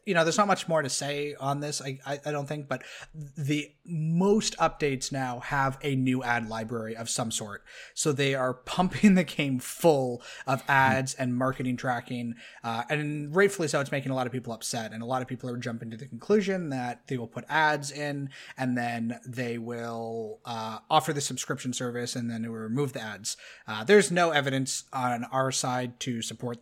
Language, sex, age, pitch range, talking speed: English, male, 30-49, 120-145 Hz, 205 wpm